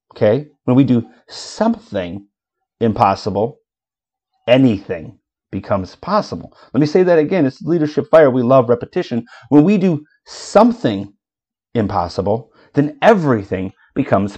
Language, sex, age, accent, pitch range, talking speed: English, male, 30-49, American, 105-145 Hz, 115 wpm